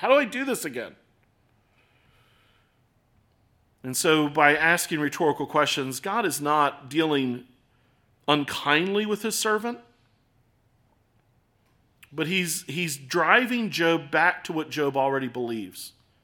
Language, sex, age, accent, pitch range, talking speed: English, male, 40-59, American, 120-180 Hz, 115 wpm